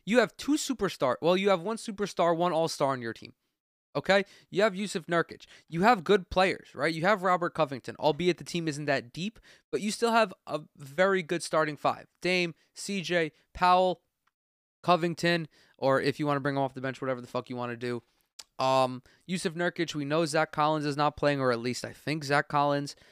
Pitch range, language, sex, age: 135-190 Hz, English, male, 20-39